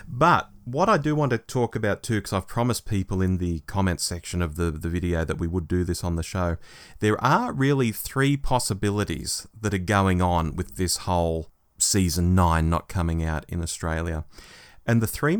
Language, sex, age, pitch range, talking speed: English, male, 30-49, 90-115 Hz, 200 wpm